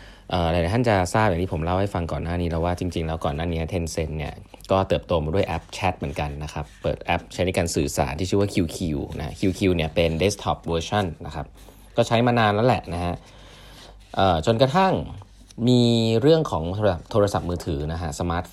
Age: 20-39